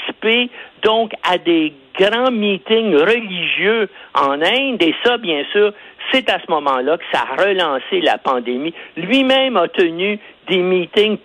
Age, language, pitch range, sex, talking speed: 60-79, French, 170-265 Hz, male, 145 wpm